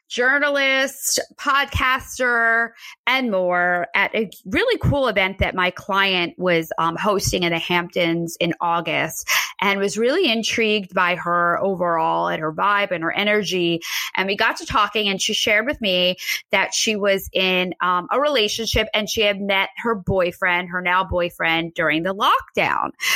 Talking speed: 160 wpm